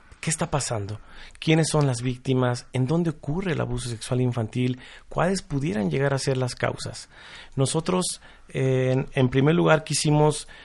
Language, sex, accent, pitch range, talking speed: Spanish, male, Mexican, 120-145 Hz, 150 wpm